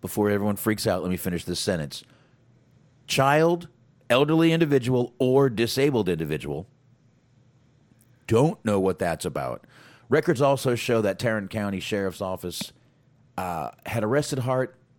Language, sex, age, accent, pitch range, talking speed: English, male, 40-59, American, 90-130 Hz, 130 wpm